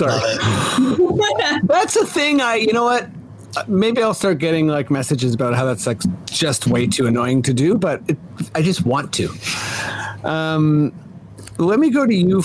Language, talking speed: English, 175 wpm